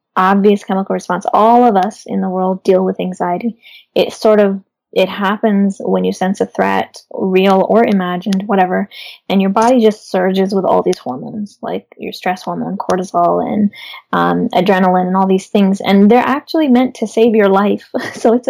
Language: English